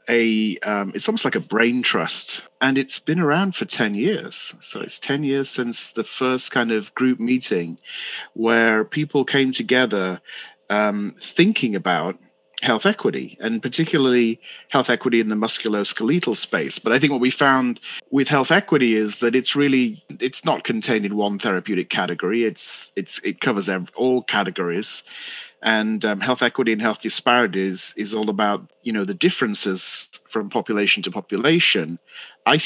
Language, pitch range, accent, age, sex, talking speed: English, 105-135 Hz, British, 30-49, male, 160 wpm